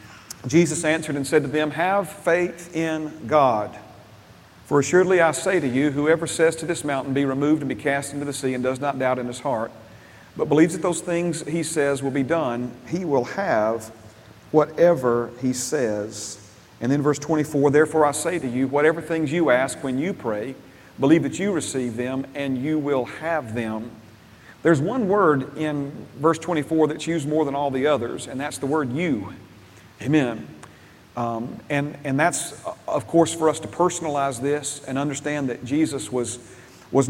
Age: 40-59